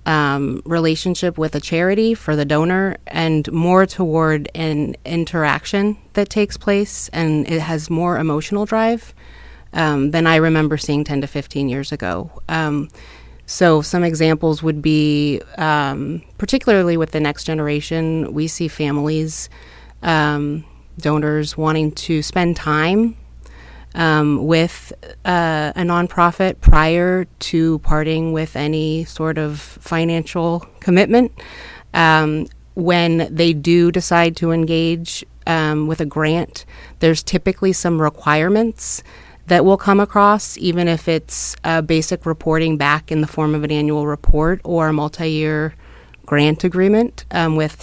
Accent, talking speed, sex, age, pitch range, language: American, 135 wpm, female, 30-49, 150-170 Hz, English